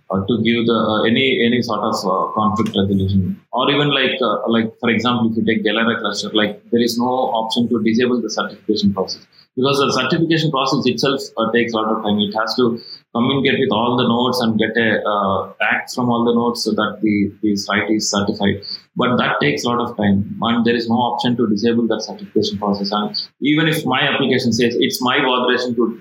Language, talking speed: English, 220 wpm